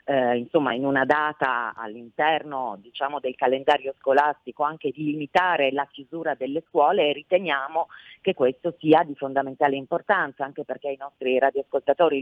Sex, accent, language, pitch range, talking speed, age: female, native, Italian, 140-170 Hz, 145 wpm, 40-59